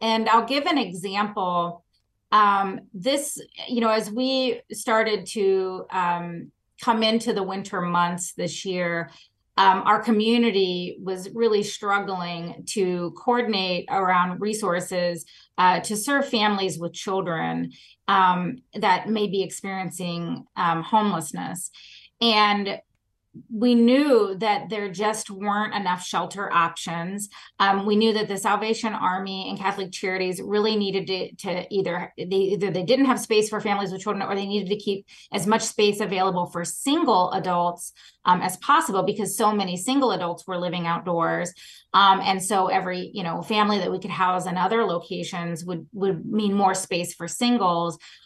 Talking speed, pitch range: 155 wpm, 180-215 Hz